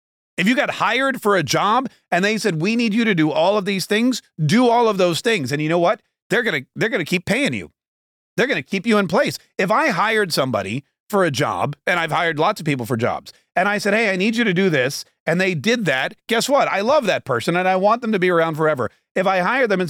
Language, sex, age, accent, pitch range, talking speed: English, male, 40-59, American, 155-200 Hz, 275 wpm